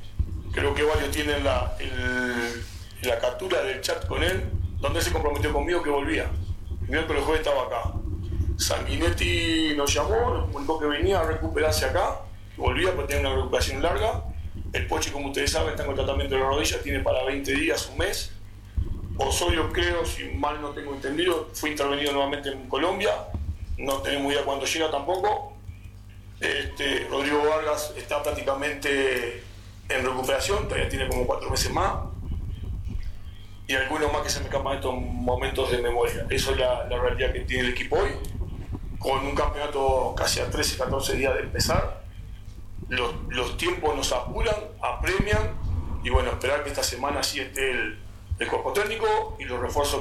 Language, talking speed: Spanish, 165 wpm